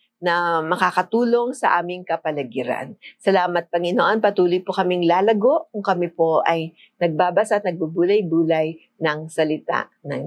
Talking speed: 125 wpm